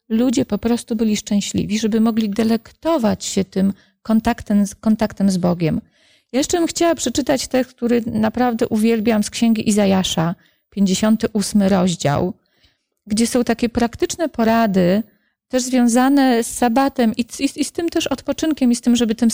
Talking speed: 150 wpm